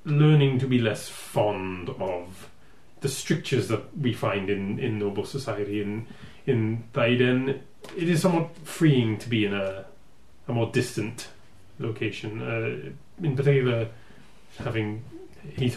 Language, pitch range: English, 105-135 Hz